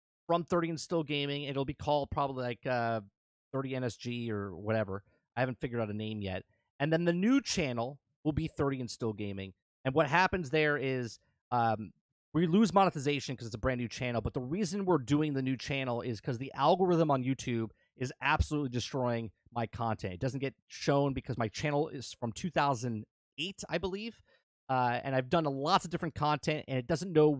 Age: 30-49